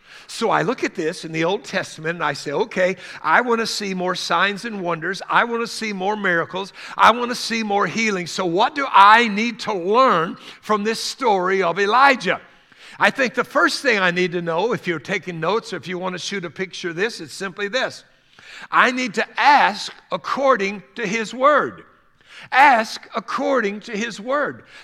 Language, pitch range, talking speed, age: English, 185-245 Hz, 205 wpm, 60-79